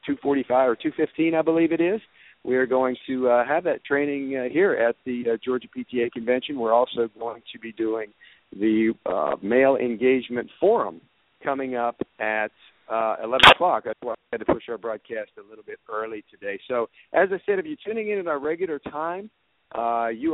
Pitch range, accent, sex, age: 120-160 Hz, American, male, 50-69